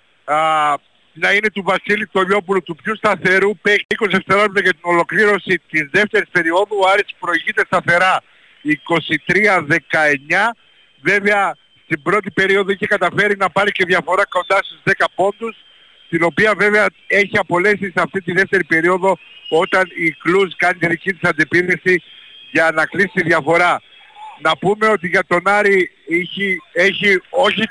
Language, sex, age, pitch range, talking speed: Greek, male, 60-79, 170-200 Hz, 145 wpm